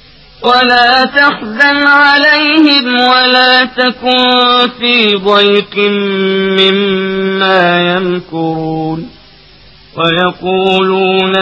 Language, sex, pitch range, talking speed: Arabic, male, 185-240 Hz, 55 wpm